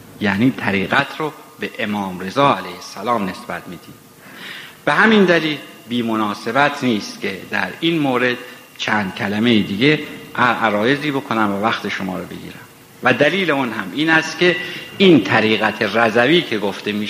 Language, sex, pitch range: Persian, male, 110-155 Hz